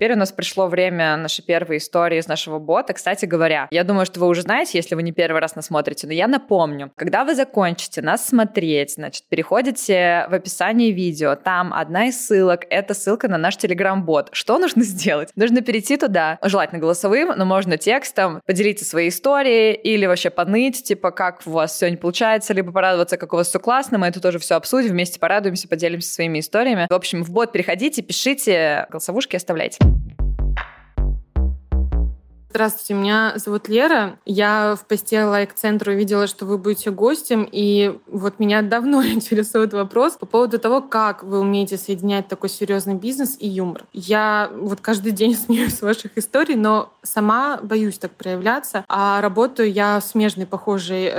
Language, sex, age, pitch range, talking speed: Russian, female, 20-39, 180-220 Hz, 170 wpm